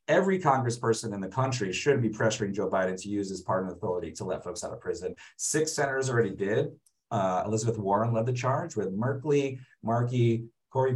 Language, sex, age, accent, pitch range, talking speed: English, male, 30-49, American, 105-135 Hz, 190 wpm